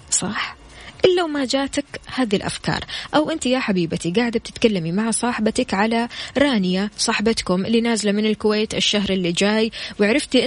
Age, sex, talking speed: 20-39, female, 140 wpm